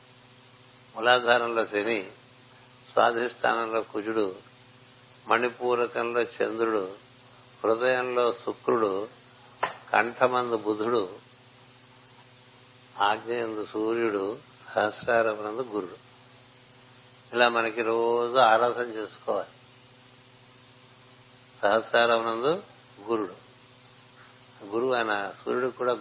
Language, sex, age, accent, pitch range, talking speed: Telugu, male, 60-79, native, 115-125 Hz, 60 wpm